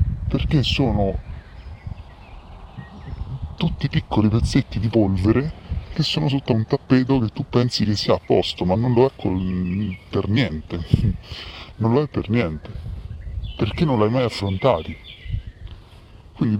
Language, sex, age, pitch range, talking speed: Italian, female, 30-49, 85-110 Hz, 135 wpm